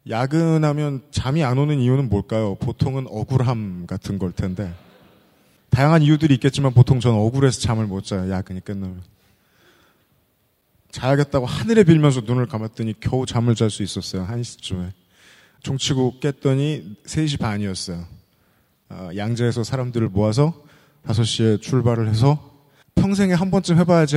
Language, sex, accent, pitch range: Korean, male, native, 110-140 Hz